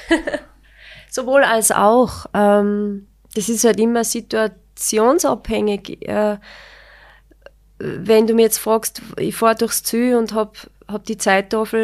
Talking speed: 120 wpm